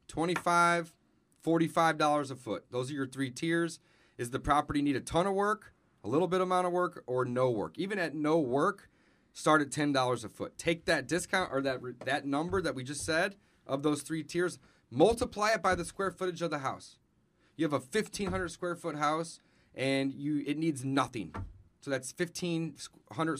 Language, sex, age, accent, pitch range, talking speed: English, male, 30-49, American, 135-175 Hz, 190 wpm